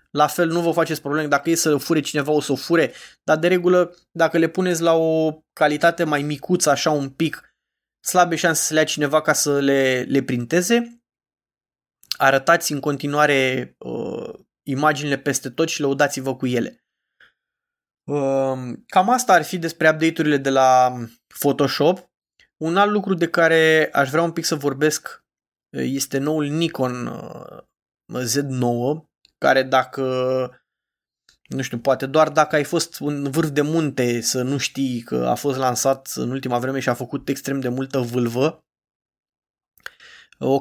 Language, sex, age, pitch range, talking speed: Romanian, male, 20-39, 130-160 Hz, 160 wpm